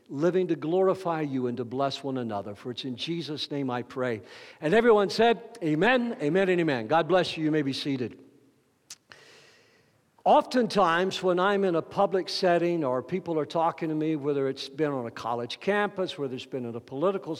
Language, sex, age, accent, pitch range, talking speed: English, male, 60-79, American, 140-200 Hz, 195 wpm